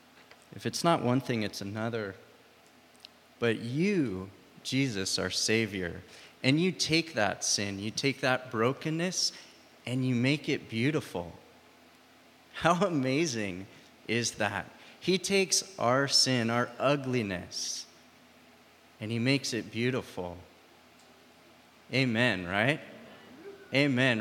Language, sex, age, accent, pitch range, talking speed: English, male, 30-49, American, 110-140 Hz, 110 wpm